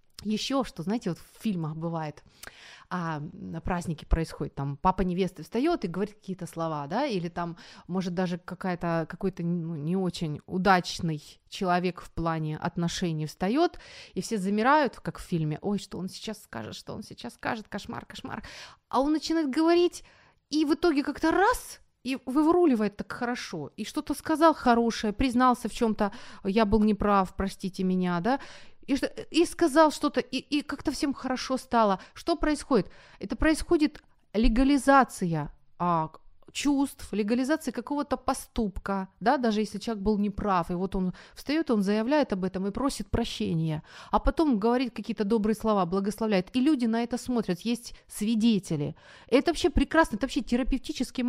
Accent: native